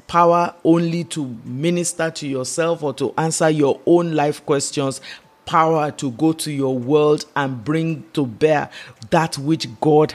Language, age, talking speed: English, 50-69, 155 wpm